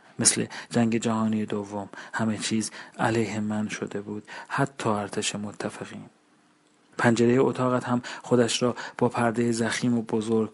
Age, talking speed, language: 40-59, 130 wpm, Persian